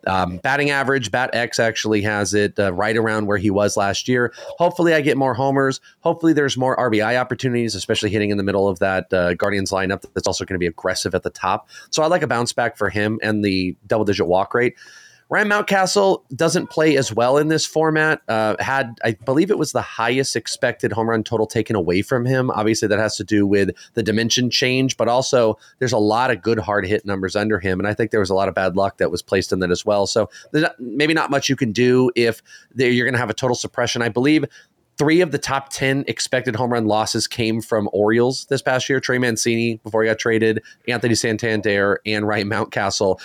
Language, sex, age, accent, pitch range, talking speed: English, male, 30-49, American, 105-130 Hz, 235 wpm